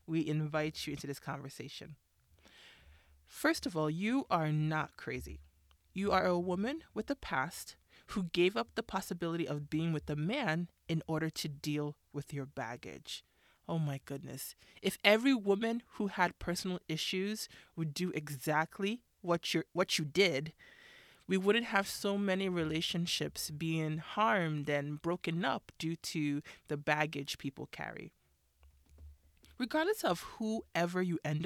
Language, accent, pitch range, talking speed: English, American, 150-195 Hz, 145 wpm